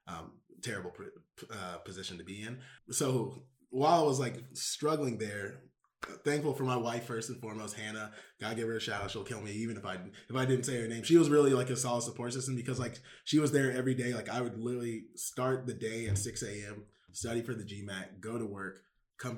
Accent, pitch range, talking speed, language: American, 105-130 Hz, 225 wpm, English